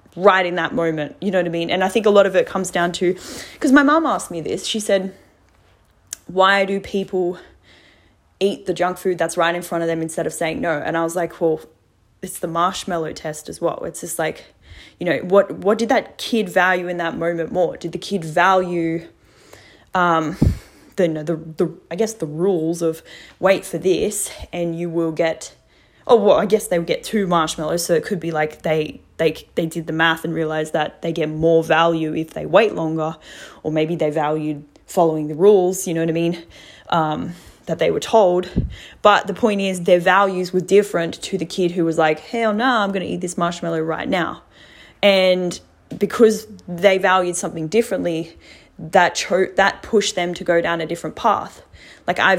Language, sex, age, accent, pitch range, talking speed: English, female, 10-29, Australian, 165-195 Hz, 205 wpm